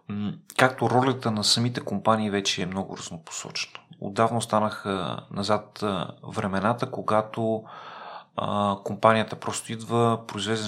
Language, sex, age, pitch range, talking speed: Bulgarian, male, 30-49, 105-115 Hz, 105 wpm